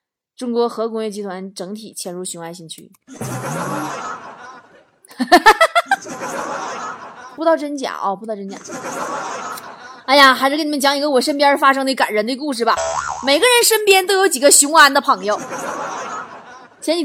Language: Chinese